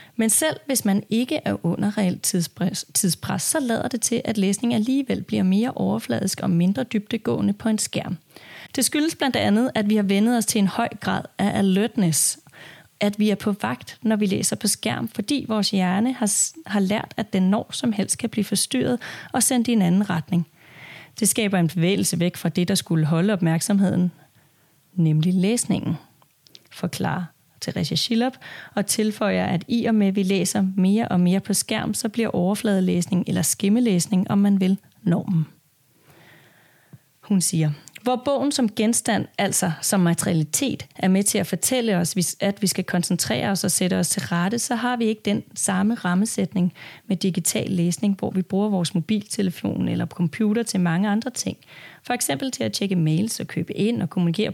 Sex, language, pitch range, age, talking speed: female, Danish, 175-220 Hz, 30-49, 185 wpm